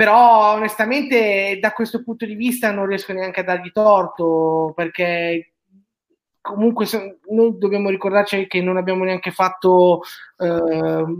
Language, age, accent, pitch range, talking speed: Italian, 20-39, native, 185-225 Hz, 130 wpm